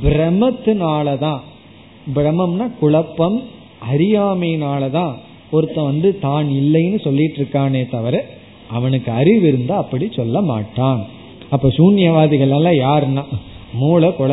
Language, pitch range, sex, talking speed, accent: Tamil, 125-175 Hz, male, 50 wpm, native